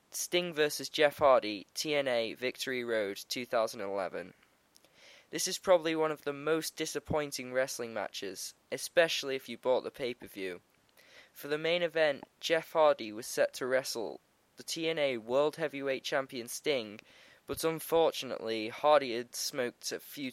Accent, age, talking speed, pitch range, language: British, 10-29, 140 wpm, 125-155 Hz, English